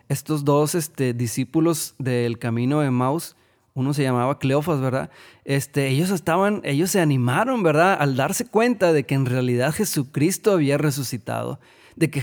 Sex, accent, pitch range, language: male, Mexican, 130-165 Hz, Spanish